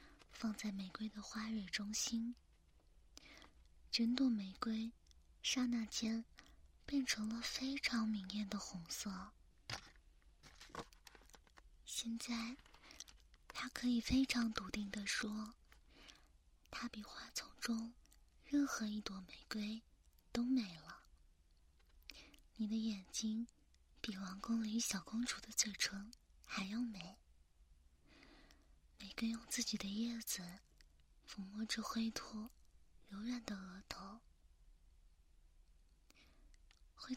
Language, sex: Chinese, female